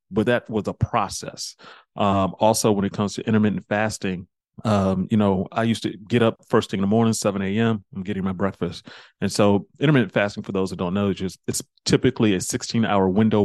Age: 30-49